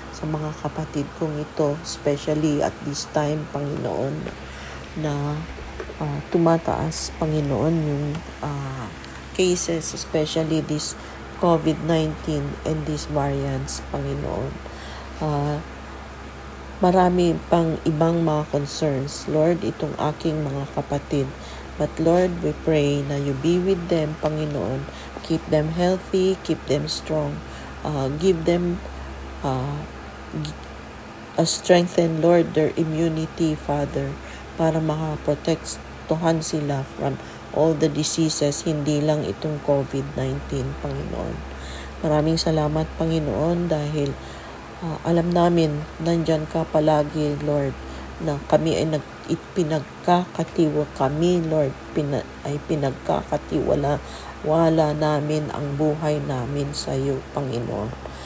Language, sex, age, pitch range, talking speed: English, female, 40-59, 120-160 Hz, 110 wpm